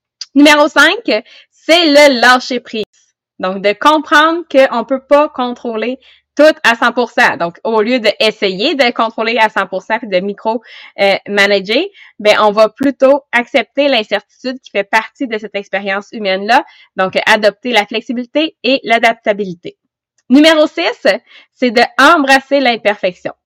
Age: 20-39